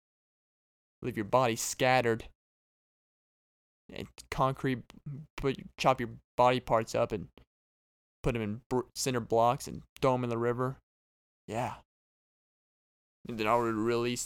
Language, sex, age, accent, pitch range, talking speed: English, male, 20-39, American, 110-130 Hz, 120 wpm